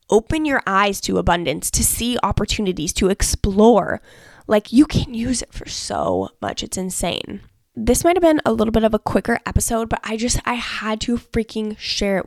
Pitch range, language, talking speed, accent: 185-230 Hz, English, 195 wpm, American